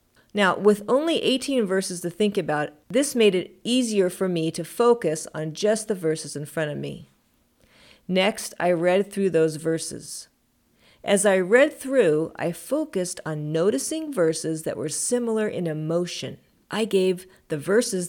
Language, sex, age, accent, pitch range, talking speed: English, female, 40-59, American, 165-235 Hz, 160 wpm